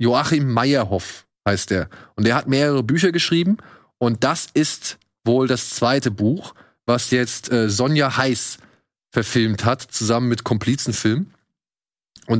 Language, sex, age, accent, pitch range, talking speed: German, male, 20-39, German, 115-135 Hz, 135 wpm